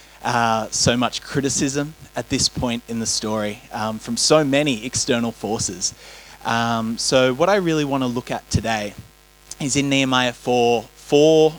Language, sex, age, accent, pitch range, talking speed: English, male, 20-39, Australian, 125-150 Hz, 160 wpm